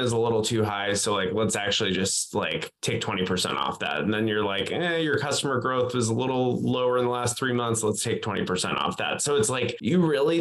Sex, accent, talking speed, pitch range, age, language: male, American, 240 wpm, 95-120 Hz, 20-39, English